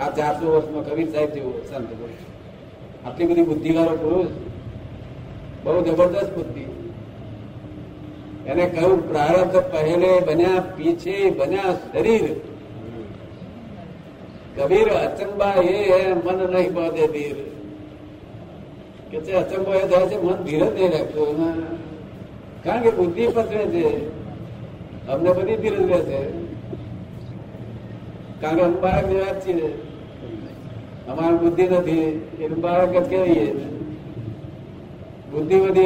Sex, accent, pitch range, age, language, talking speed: male, native, 150-185 Hz, 50-69, Gujarati, 95 wpm